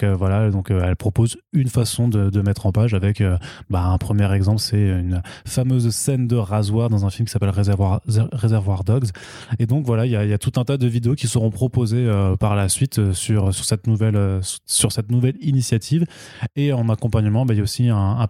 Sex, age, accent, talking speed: male, 20-39, French, 215 wpm